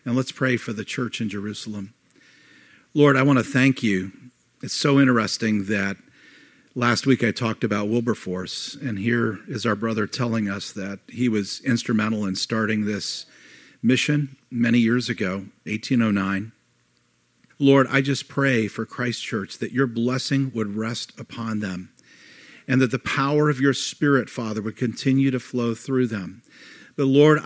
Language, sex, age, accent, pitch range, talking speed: English, male, 50-69, American, 115-135 Hz, 160 wpm